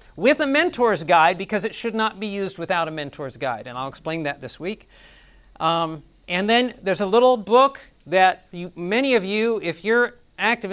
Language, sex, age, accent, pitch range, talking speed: English, male, 50-69, American, 170-230 Hz, 195 wpm